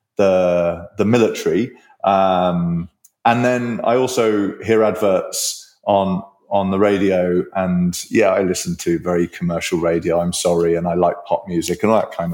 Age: 30-49